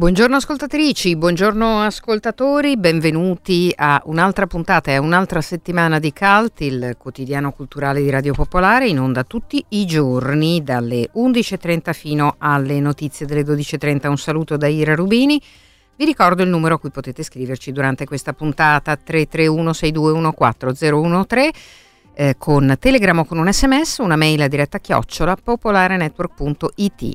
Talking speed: 140 wpm